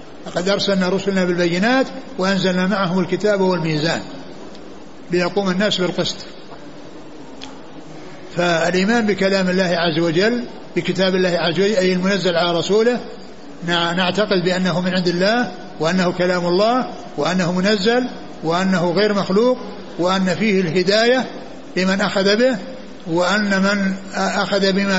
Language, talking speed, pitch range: Arabic, 115 wpm, 175-205 Hz